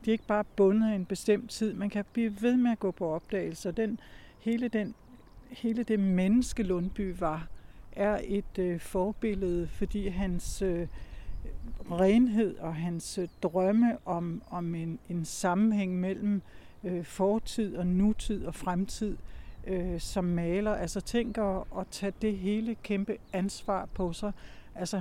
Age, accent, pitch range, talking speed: 60-79, Danish, 180-210 Hz, 150 wpm